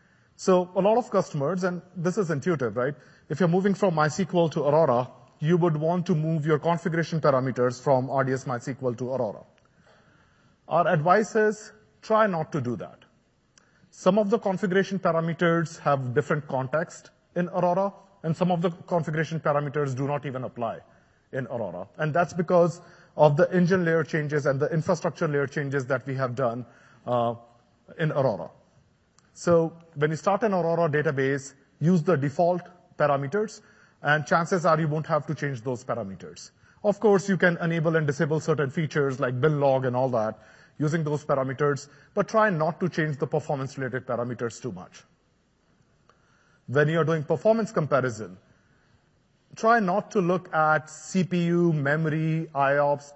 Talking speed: 160 wpm